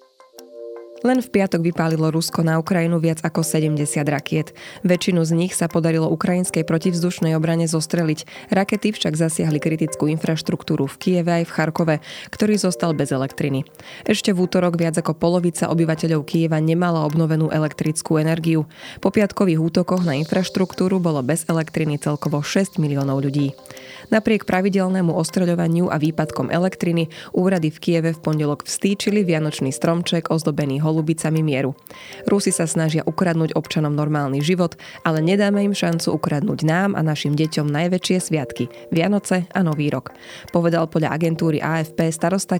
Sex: female